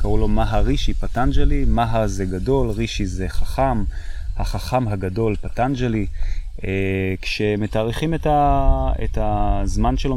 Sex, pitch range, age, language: male, 95-120 Hz, 20-39, Hebrew